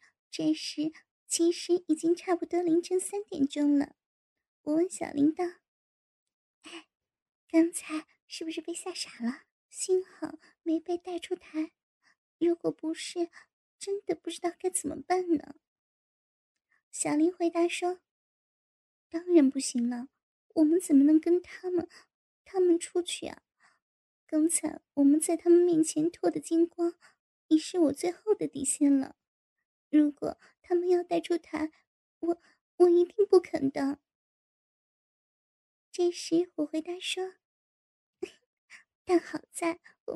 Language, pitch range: Chinese, 310-355 Hz